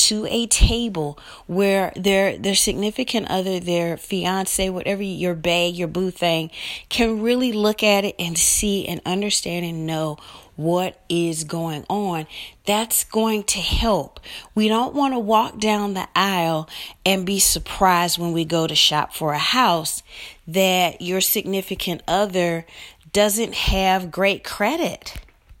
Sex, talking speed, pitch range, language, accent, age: female, 145 wpm, 170-215 Hz, English, American, 40-59